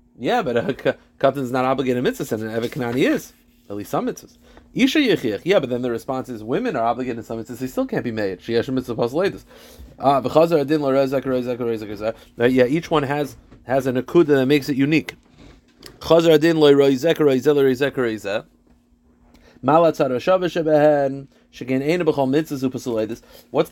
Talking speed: 125 wpm